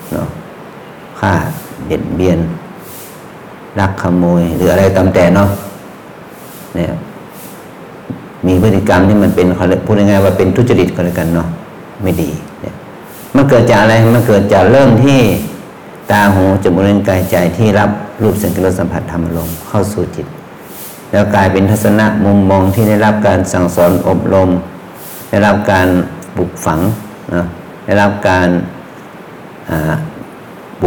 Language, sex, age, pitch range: English, male, 60-79, 90-105 Hz